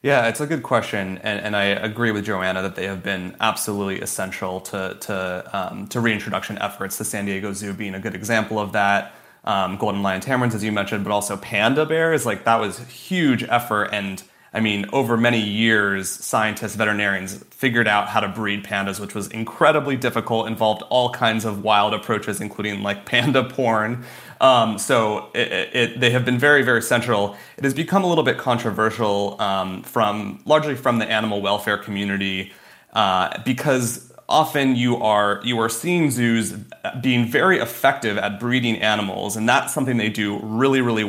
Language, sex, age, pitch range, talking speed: English, male, 30-49, 105-125 Hz, 180 wpm